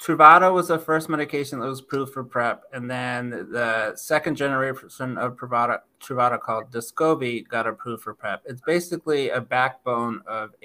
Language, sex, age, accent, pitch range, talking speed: English, male, 30-49, American, 120-145 Hz, 165 wpm